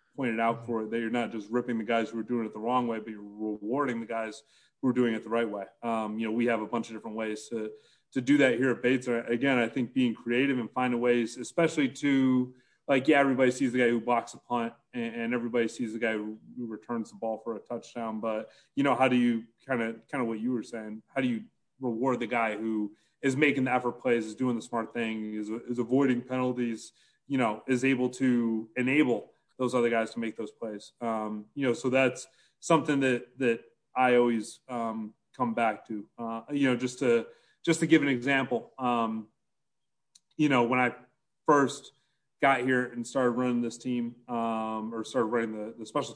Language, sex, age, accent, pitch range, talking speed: English, male, 30-49, American, 115-130 Hz, 225 wpm